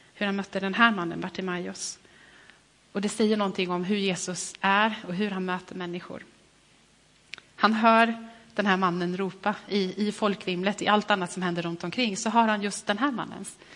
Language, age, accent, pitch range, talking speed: Swedish, 30-49, native, 185-210 Hz, 190 wpm